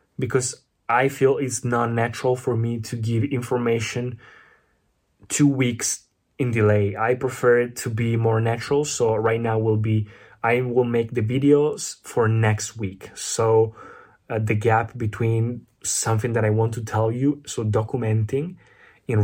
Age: 20-39